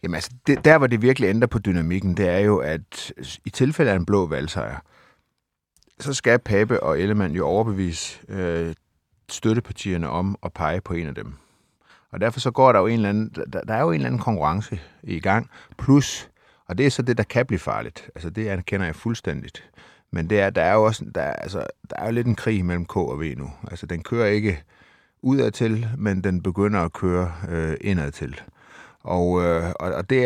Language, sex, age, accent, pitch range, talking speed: Danish, male, 30-49, native, 85-110 Hz, 215 wpm